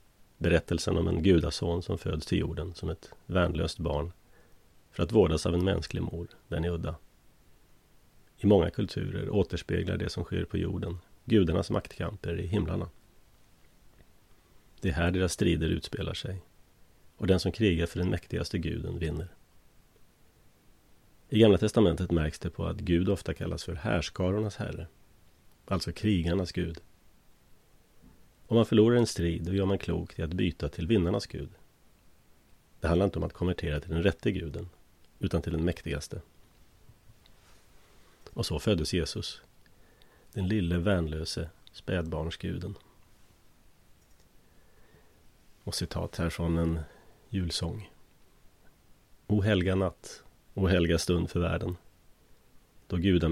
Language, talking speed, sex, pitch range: Swedish, 135 wpm, male, 85-95 Hz